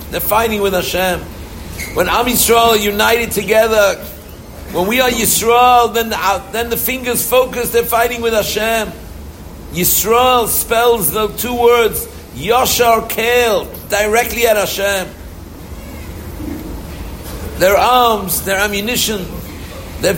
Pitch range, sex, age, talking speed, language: 155-235 Hz, male, 60-79, 120 wpm, English